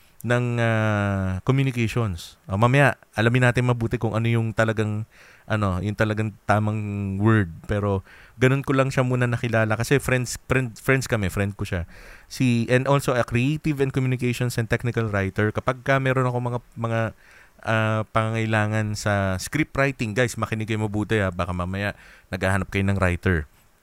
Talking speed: 165 wpm